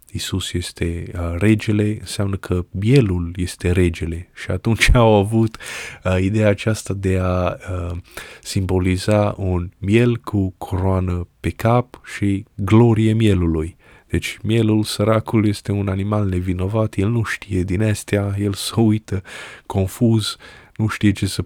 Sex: male